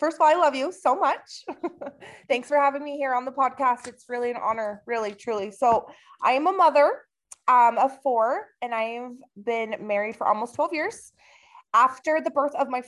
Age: 20-39